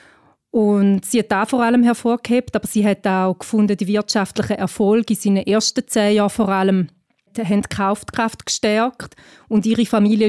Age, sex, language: 30-49, female, German